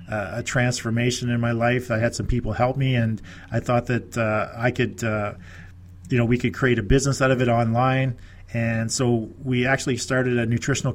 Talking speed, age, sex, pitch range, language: 205 wpm, 40-59, male, 110-130 Hz, English